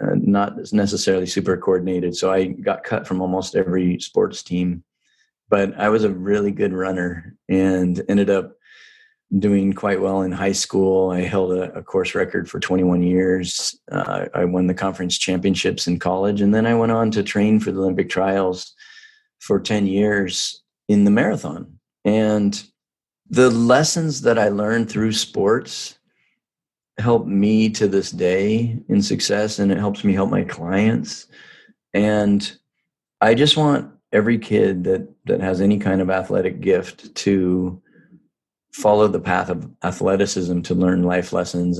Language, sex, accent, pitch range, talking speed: English, male, American, 90-110 Hz, 160 wpm